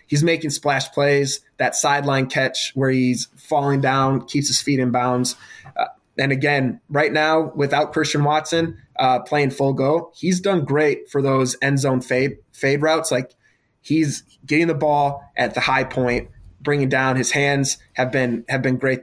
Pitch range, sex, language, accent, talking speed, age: 125-150 Hz, male, English, American, 175 wpm, 20-39